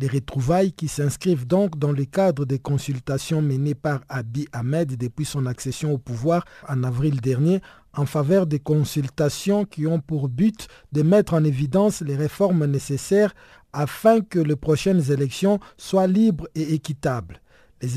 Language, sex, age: French, male, 50-69